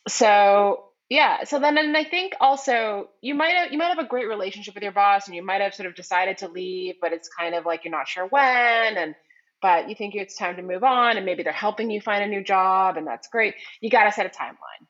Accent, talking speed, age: American, 260 wpm, 30-49